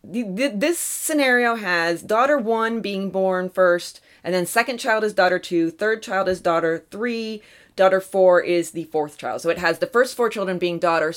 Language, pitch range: English, 165-230 Hz